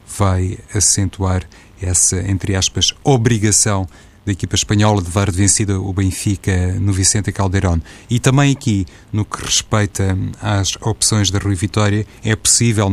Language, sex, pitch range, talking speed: Portuguese, male, 95-105 Hz, 140 wpm